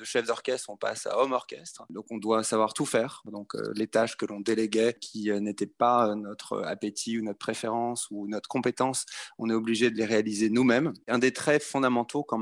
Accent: French